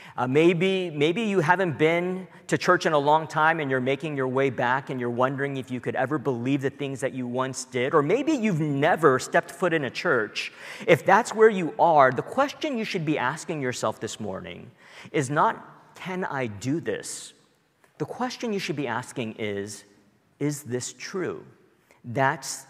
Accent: American